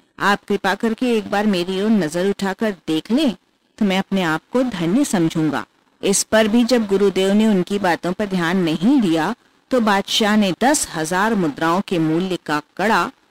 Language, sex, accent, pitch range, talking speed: Hindi, female, native, 165-225 Hz, 180 wpm